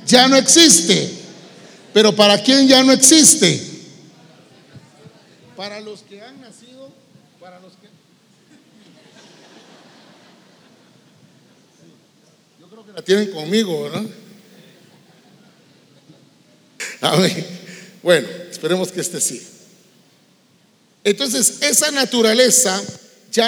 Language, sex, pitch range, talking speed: English, male, 195-255 Hz, 85 wpm